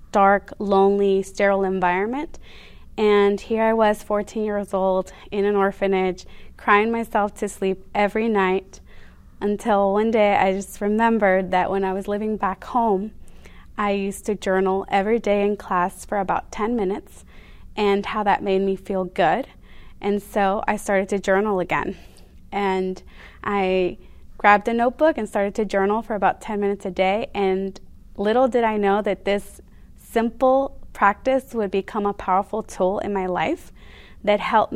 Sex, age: female, 20-39